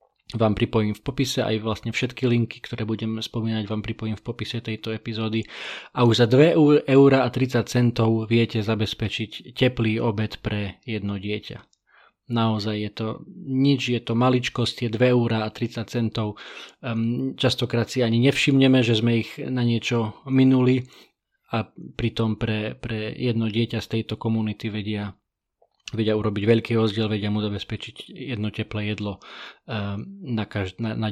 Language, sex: Slovak, male